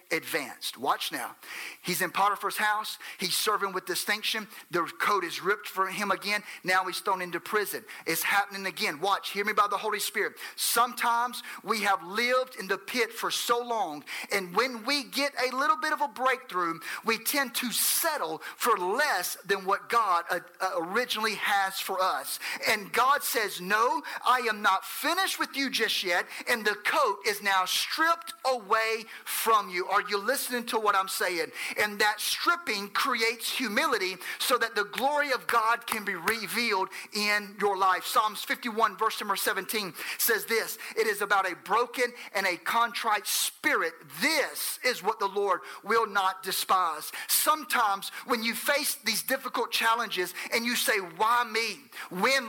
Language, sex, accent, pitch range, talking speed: English, male, American, 195-250 Hz, 170 wpm